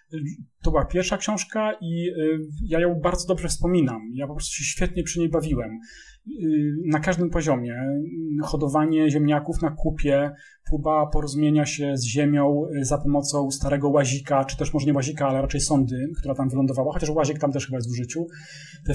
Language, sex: Polish, male